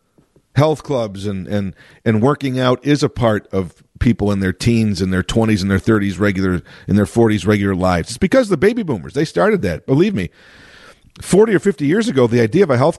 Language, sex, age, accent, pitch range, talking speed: English, male, 50-69, American, 100-140 Hz, 220 wpm